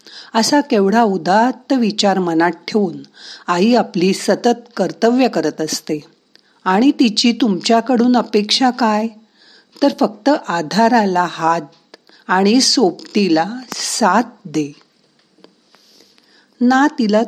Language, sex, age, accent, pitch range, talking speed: Marathi, female, 50-69, native, 190-240 Hz, 50 wpm